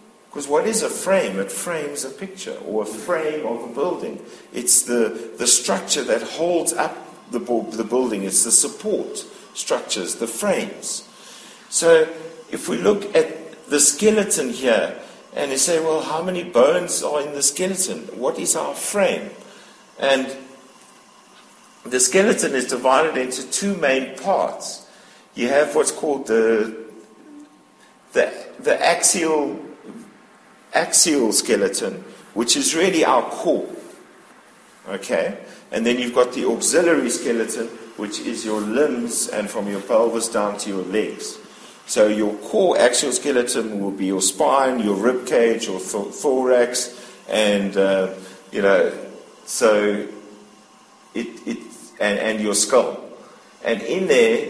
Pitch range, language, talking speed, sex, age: 110-165 Hz, English, 140 wpm, male, 50-69